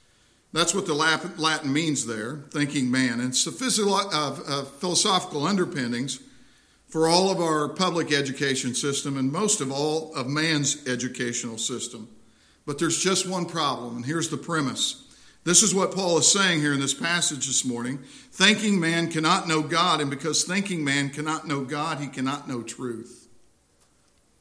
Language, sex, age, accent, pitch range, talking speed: English, male, 50-69, American, 125-165 Hz, 155 wpm